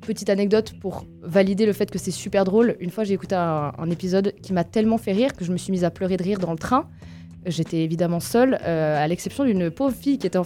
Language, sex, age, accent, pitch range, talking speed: French, female, 20-39, French, 185-245 Hz, 265 wpm